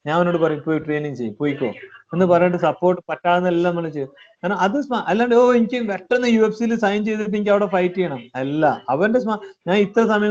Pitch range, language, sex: 160-205 Hz, Malayalam, male